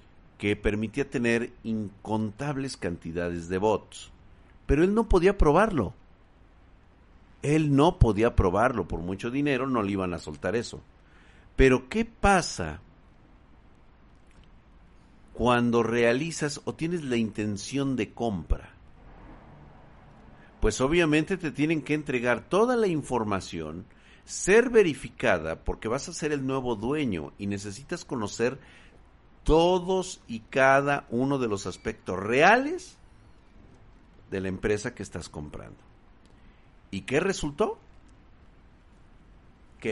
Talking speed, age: 115 wpm, 50-69